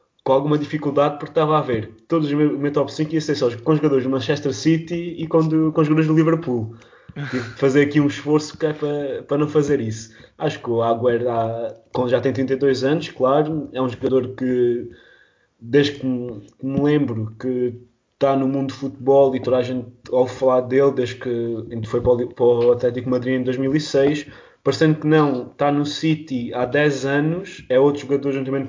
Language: Portuguese